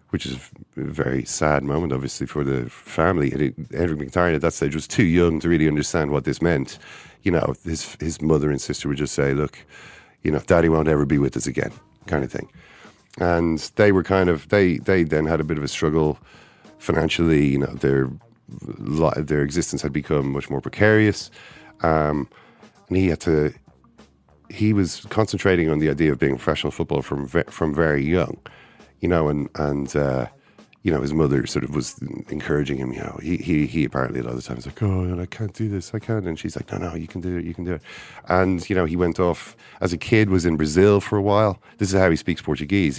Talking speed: 220 wpm